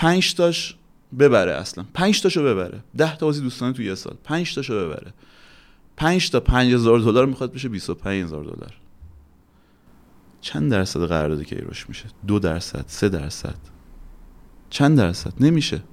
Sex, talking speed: male, 130 wpm